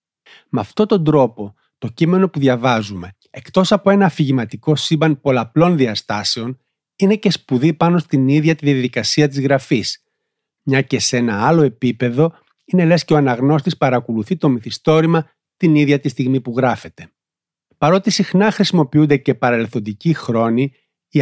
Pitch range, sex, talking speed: 120-155 Hz, male, 145 wpm